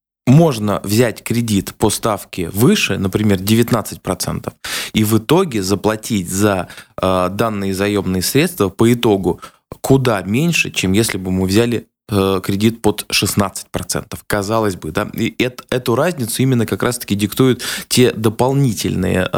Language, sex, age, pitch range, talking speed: Russian, male, 20-39, 95-120 Hz, 125 wpm